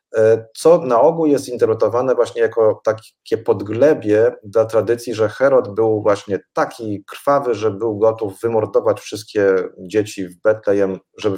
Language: Polish